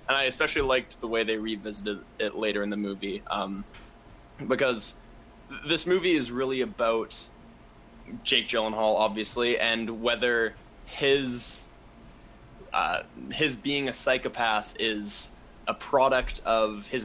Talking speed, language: 125 wpm, English